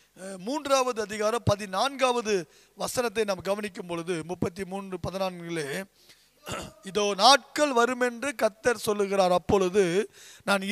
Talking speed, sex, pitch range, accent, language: 90 wpm, male, 195-260 Hz, native, Tamil